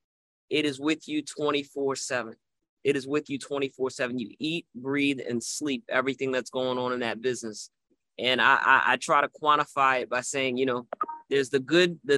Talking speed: 190 wpm